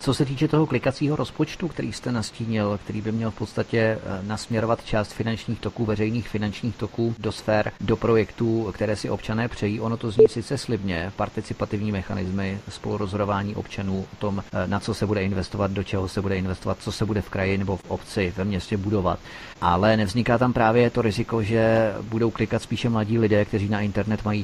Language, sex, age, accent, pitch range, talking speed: Czech, male, 40-59, native, 100-110 Hz, 190 wpm